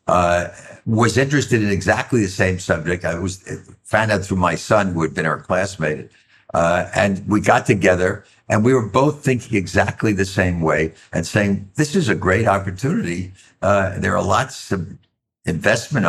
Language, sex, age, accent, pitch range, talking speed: English, male, 60-79, American, 95-115 Hz, 175 wpm